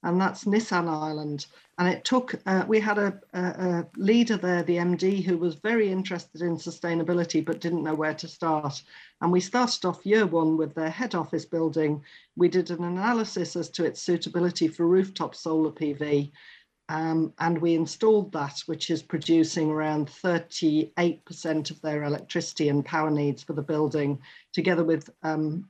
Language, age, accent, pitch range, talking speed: English, 40-59, British, 155-180 Hz, 170 wpm